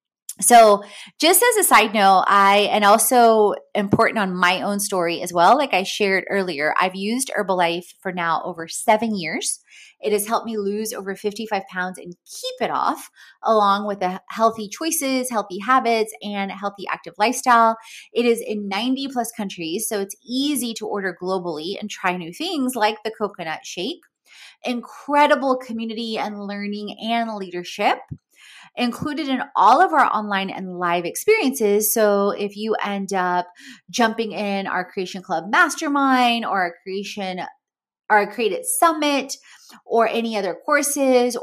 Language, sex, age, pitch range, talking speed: English, female, 20-39, 195-245 Hz, 160 wpm